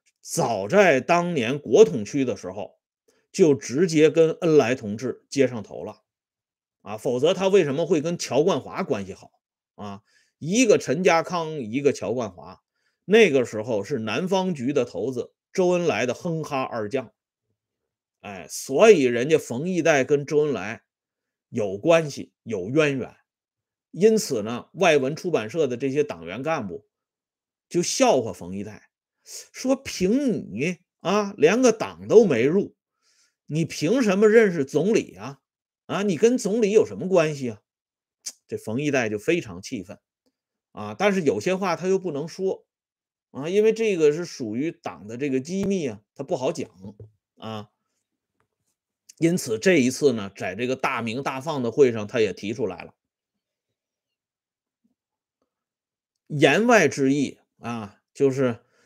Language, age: Swedish, 30-49